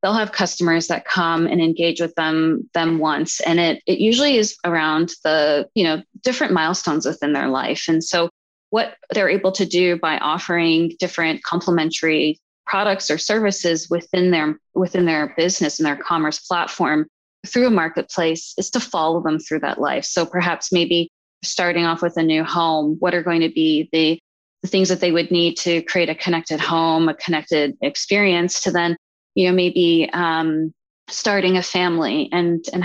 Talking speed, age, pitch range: 180 wpm, 20-39, 160-180 Hz